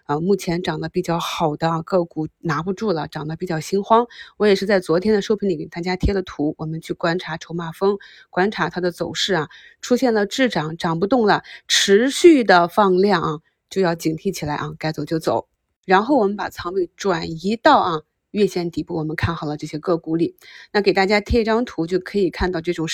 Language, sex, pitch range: Chinese, female, 165-205 Hz